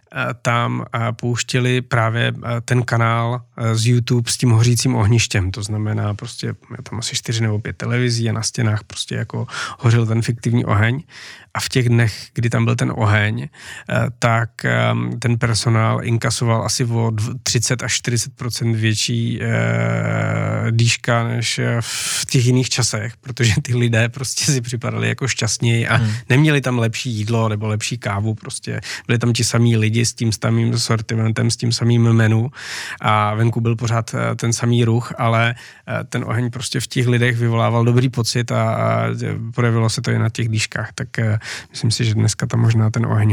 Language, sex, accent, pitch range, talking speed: Czech, male, native, 110-125 Hz, 165 wpm